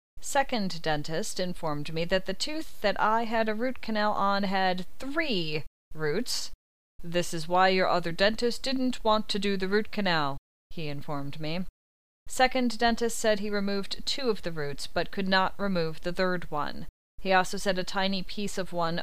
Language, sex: English, female